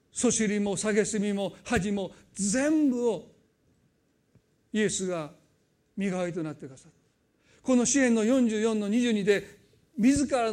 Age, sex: 40-59, male